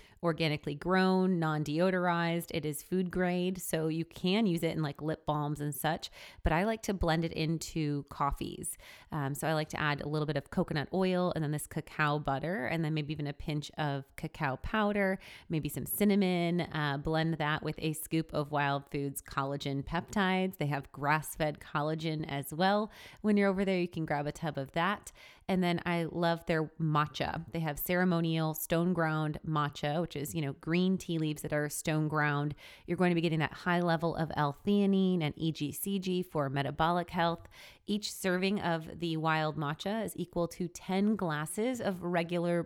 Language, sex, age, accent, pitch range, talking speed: English, female, 30-49, American, 150-175 Hz, 190 wpm